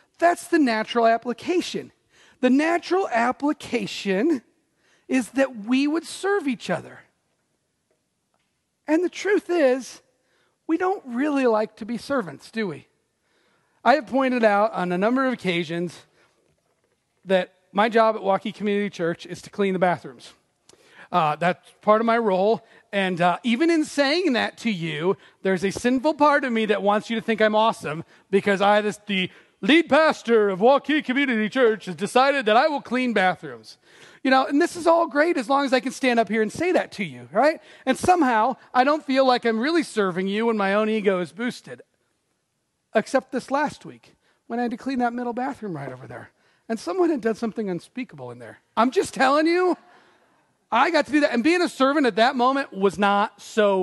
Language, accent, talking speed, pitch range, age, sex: English, American, 190 wpm, 200-280 Hz, 40-59, male